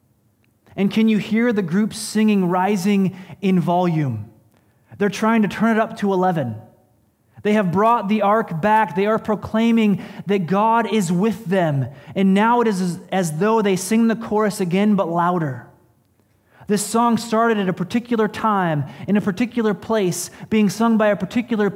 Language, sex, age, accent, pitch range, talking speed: English, male, 30-49, American, 135-210 Hz, 170 wpm